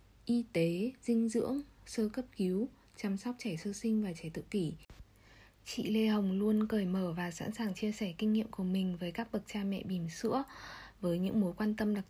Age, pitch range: 10-29, 185-225 Hz